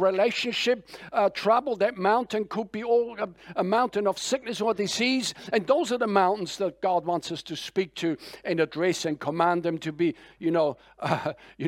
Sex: male